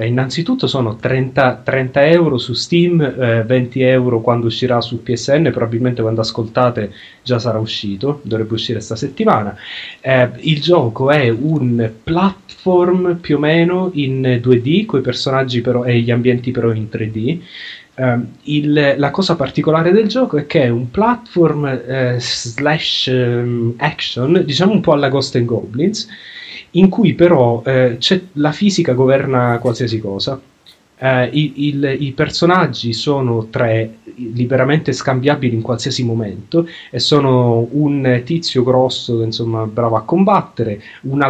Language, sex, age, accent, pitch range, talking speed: Italian, male, 30-49, native, 115-150 Hz, 145 wpm